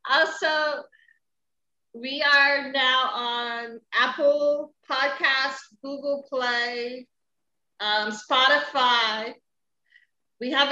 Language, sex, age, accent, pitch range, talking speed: English, female, 30-49, American, 220-260 Hz, 75 wpm